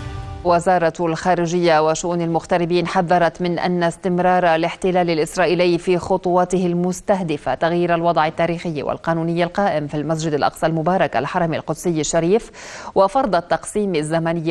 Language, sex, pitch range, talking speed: Arabic, female, 155-185 Hz, 115 wpm